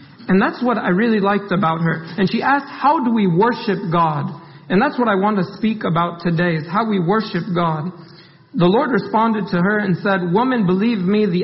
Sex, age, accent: male, 50-69, American